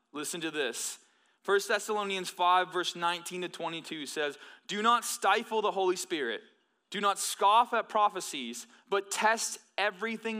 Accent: American